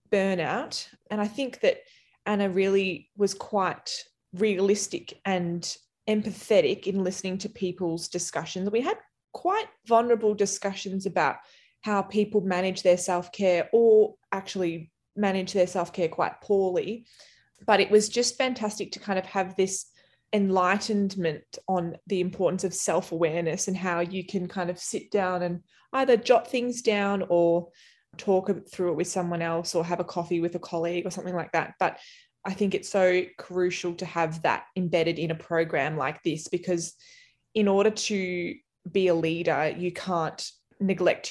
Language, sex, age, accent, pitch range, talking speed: English, female, 20-39, Australian, 175-205 Hz, 155 wpm